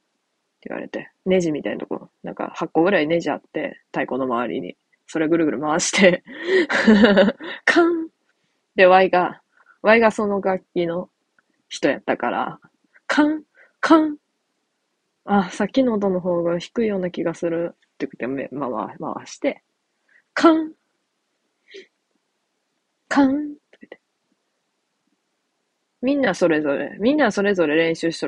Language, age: Japanese, 20-39